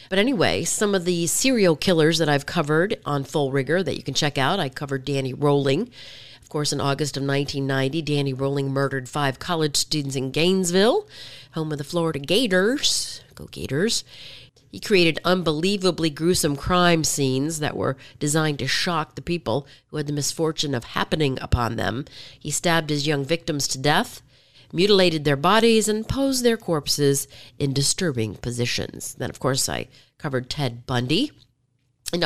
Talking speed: 165 wpm